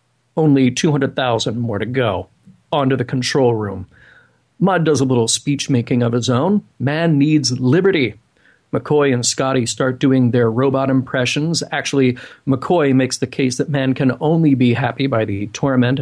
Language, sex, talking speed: English, male, 155 wpm